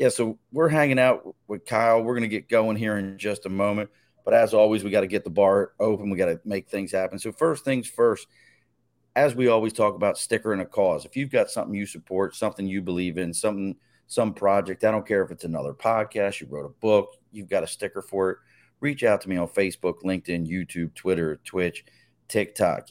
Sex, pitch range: male, 90-105 Hz